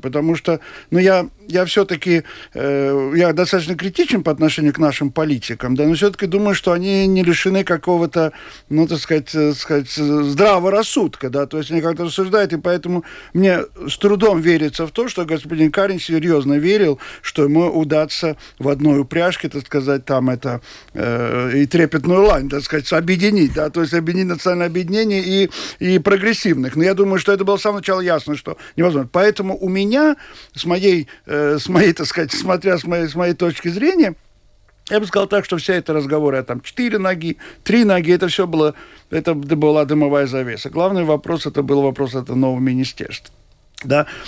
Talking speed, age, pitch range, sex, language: 180 wpm, 50-69, 150-190 Hz, male, Russian